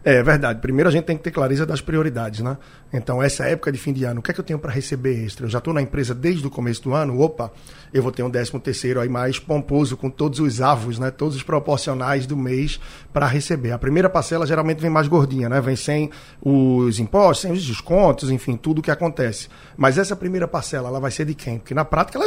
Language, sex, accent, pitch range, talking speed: Portuguese, male, Brazilian, 135-180 Hz, 250 wpm